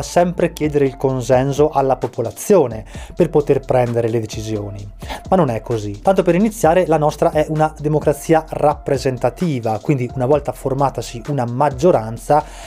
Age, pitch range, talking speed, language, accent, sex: 20-39, 125-160 Hz, 140 wpm, Italian, native, male